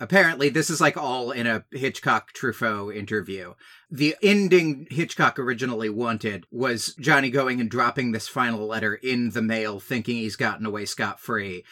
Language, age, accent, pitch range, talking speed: English, 30-49, American, 115-165 Hz, 160 wpm